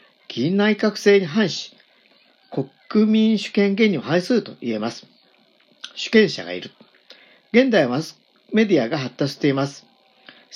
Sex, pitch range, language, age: male, 135-215 Hz, Japanese, 50-69